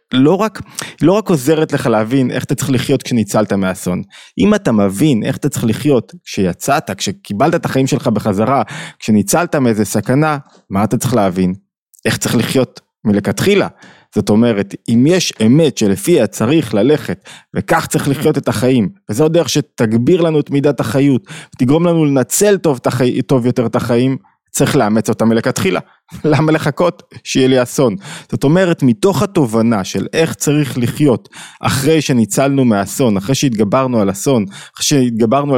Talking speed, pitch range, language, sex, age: 145 wpm, 115-155 Hz, Hebrew, male, 20-39